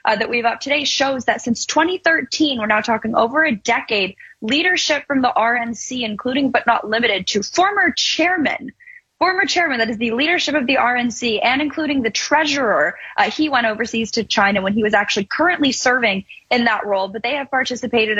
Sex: female